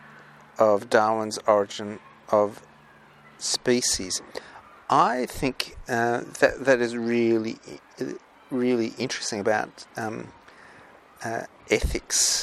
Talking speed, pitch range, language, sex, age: 85 wpm, 110-125 Hz, English, male, 50-69